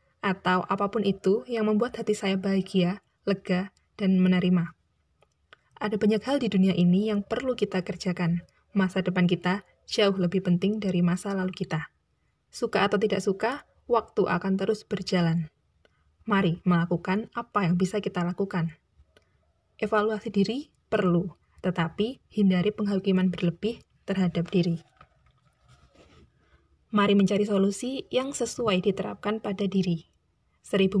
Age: 20-39